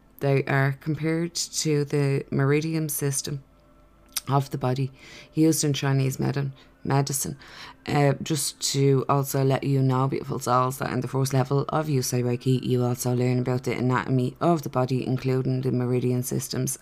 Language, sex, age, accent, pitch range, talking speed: English, female, 20-39, Irish, 125-145 Hz, 155 wpm